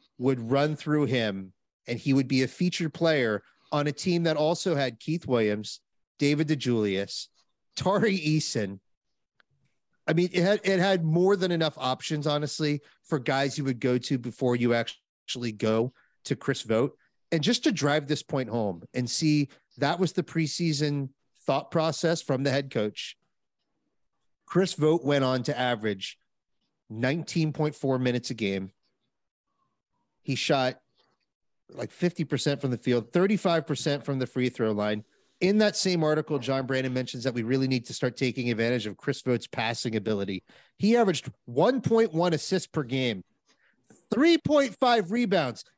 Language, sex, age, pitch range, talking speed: English, male, 30-49, 130-185 Hz, 150 wpm